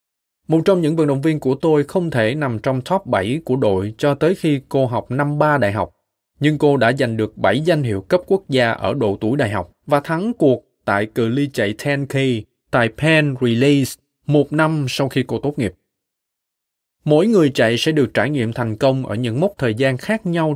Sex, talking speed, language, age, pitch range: male, 220 wpm, Vietnamese, 20-39, 110-150 Hz